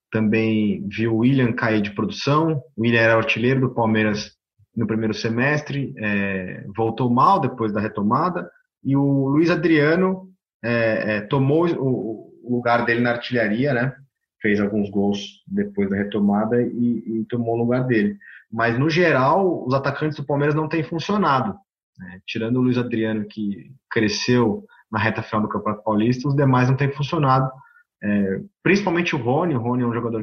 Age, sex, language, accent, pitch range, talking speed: 20-39, male, Portuguese, Brazilian, 110-150 Hz, 170 wpm